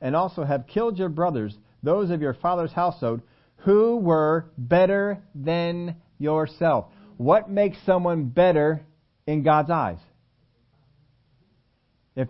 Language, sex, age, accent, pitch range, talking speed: English, male, 50-69, American, 125-165 Hz, 115 wpm